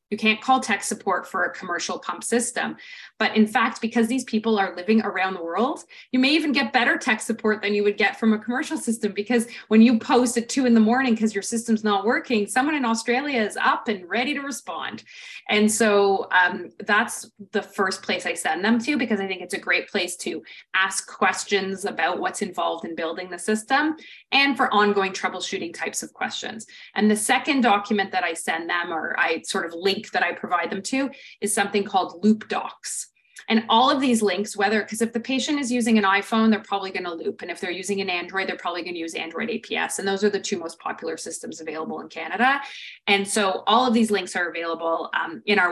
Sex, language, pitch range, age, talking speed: female, English, 190-235 Hz, 30-49, 225 wpm